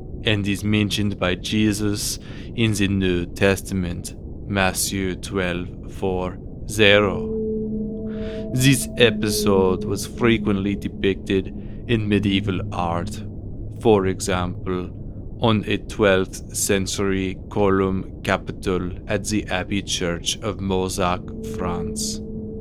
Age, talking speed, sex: 30-49, 95 wpm, male